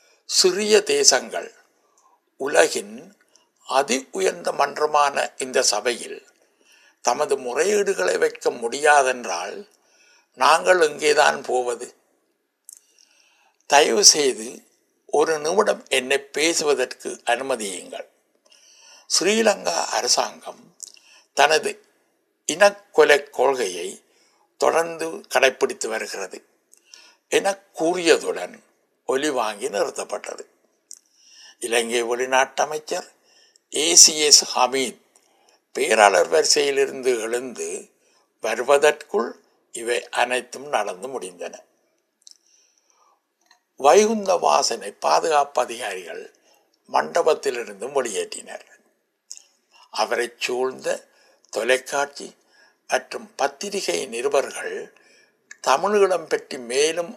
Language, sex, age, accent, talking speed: Tamil, male, 60-79, native, 50 wpm